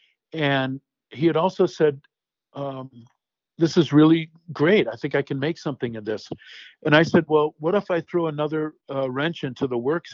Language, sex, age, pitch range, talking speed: English, male, 50-69, 135-170 Hz, 190 wpm